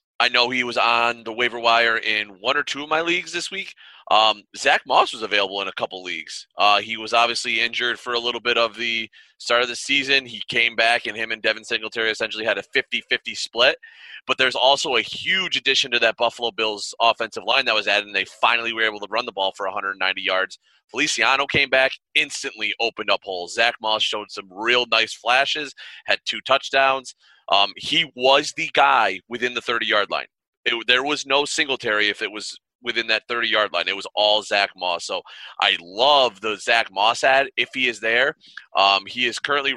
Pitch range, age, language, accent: 110-135 Hz, 30-49, English, American